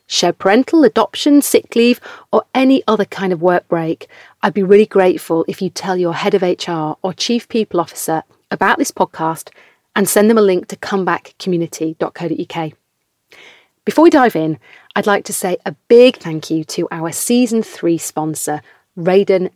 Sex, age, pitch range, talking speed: female, 30-49, 170-235 Hz, 170 wpm